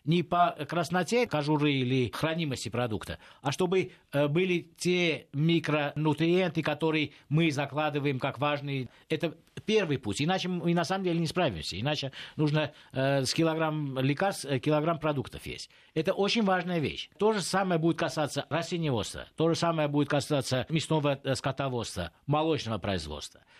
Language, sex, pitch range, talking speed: Russian, male, 135-165 Hz, 140 wpm